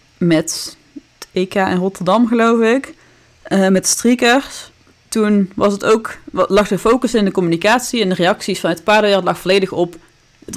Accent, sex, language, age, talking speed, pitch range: Dutch, female, Dutch, 30-49, 170 wpm, 165-195 Hz